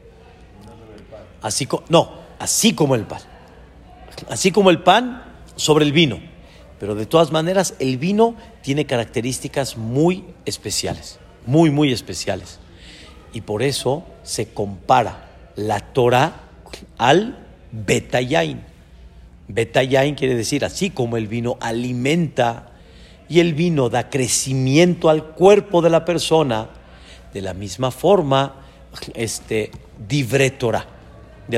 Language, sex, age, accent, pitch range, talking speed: Spanish, male, 50-69, Mexican, 105-150 Hz, 115 wpm